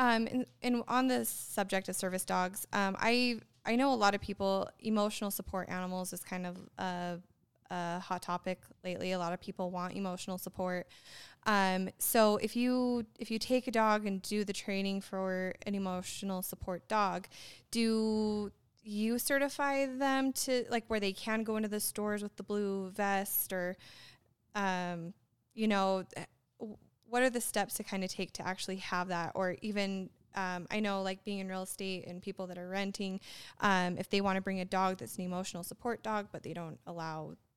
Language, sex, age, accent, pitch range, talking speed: English, female, 20-39, American, 180-215 Hz, 190 wpm